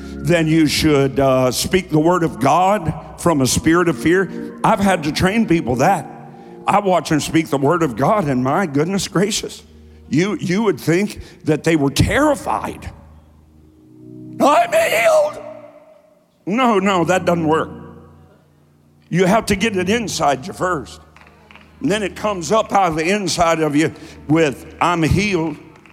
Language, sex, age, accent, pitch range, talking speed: English, male, 60-79, American, 140-205 Hz, 160 wpm